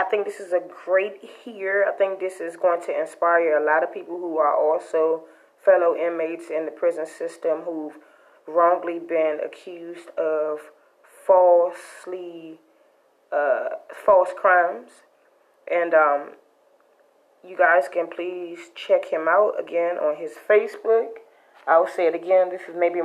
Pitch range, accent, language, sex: 170-230 Hz, American, English, female